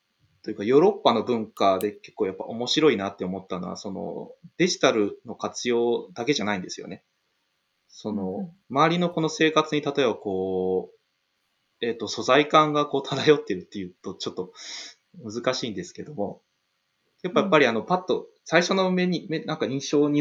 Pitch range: 100-155 Hz